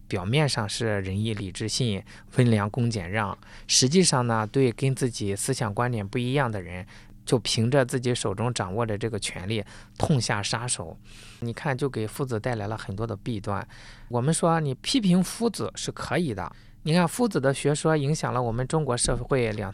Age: 20-39